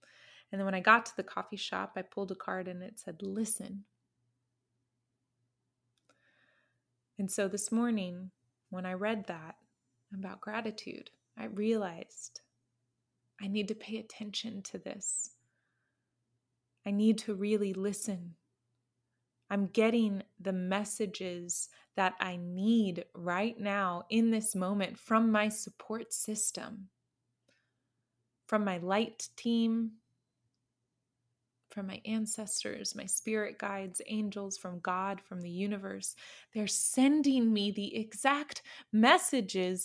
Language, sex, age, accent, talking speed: English, female, 20-39, American, 120 wpm